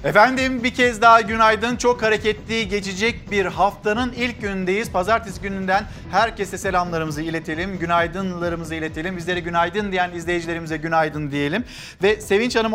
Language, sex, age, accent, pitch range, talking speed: Turkish, male, 50-69, native, 185-225 Hz, 130 wpm